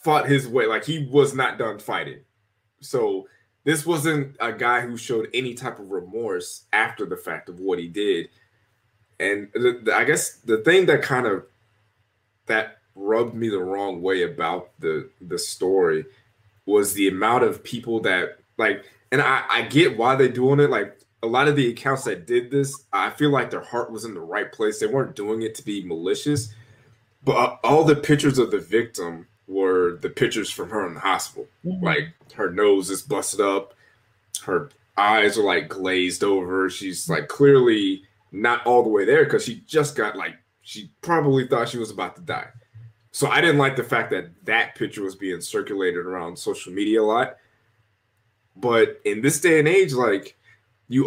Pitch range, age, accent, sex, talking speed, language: 110-180 Hz, 20-39, American, male, 190 wpm, English